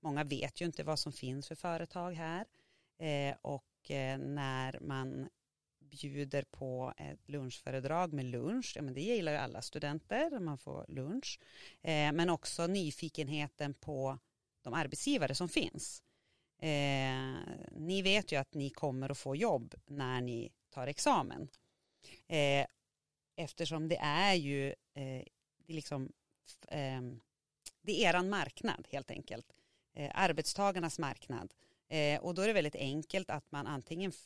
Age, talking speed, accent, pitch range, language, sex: 30-49, 140 wpm, native, 135-170 Hz, Swedish, female